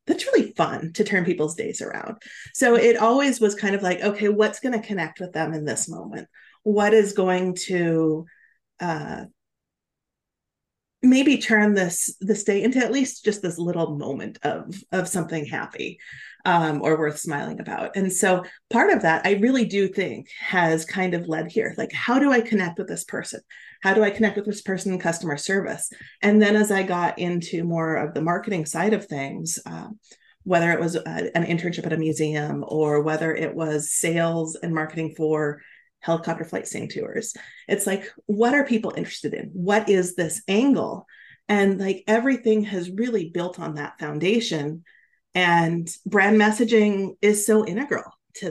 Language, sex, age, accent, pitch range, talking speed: English, female, 30-49, American, 165-215 Hz, 175 wpm